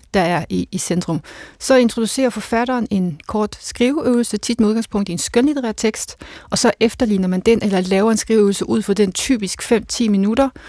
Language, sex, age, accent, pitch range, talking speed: Danish, female, 30-49, native, 195-230 Hz, 185 wpm